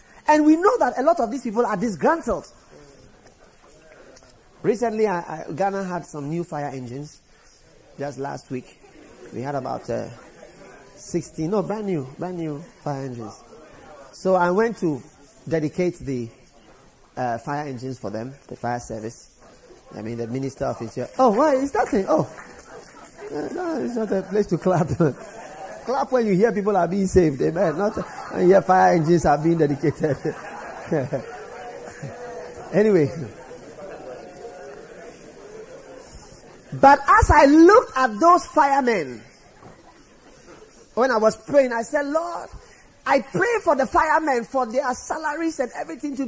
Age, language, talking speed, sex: 30-49, English, 150 wpm, male